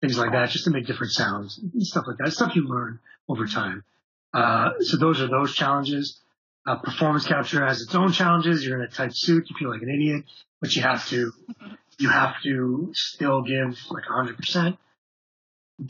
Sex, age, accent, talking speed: male, 30-49, American, 195 wpm